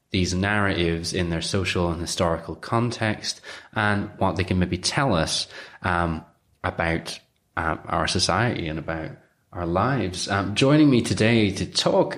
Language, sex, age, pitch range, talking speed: English, male, 20-39, 85-110 Hz, 150 wpm